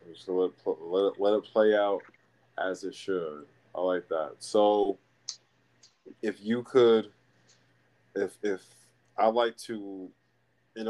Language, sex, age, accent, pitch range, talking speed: English, male, 20-39, American, 90-100 Hz, 145 wpm